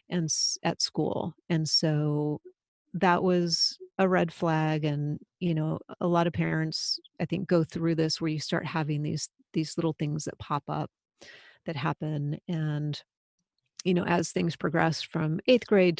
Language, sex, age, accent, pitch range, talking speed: English, female, 40-59, American, 160-185 Hz, 165 wpm